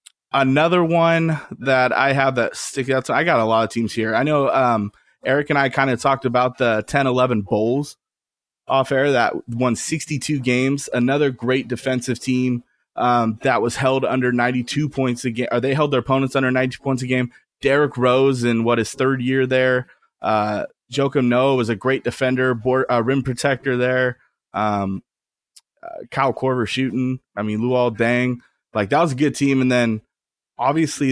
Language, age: English, 20-39